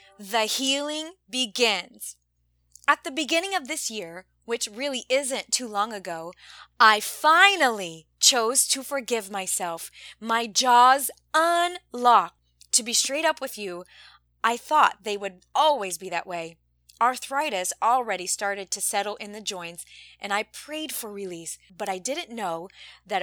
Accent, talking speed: American, 145 wpm